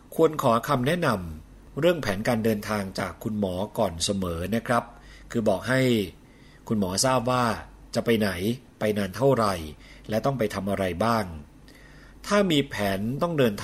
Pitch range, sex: 100-125 Hz, male